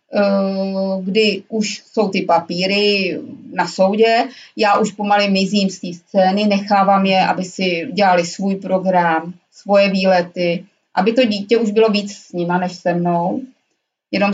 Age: 30-49